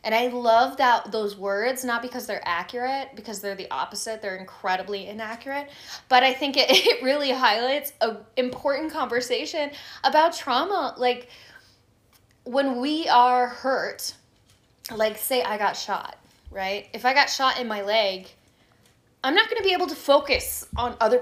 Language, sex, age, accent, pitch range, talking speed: English, female, 10-29, American, 215-280 Hz, 160 wpm